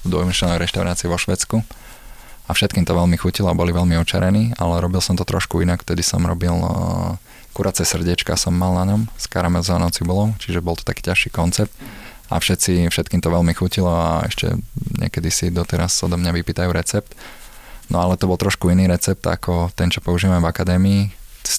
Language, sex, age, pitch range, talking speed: Slovak, male, 20-39, 85-105 Hz, 185 wpm